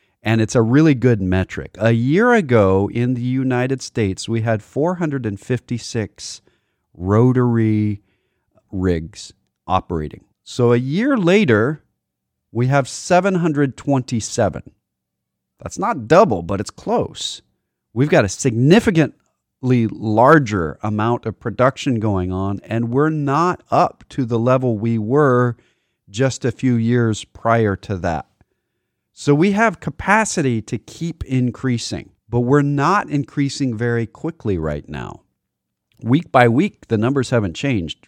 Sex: male